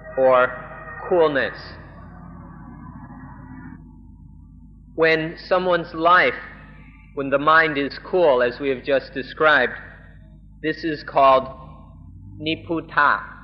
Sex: male